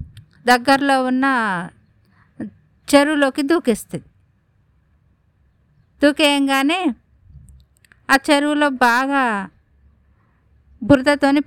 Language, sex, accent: Telugu, female, native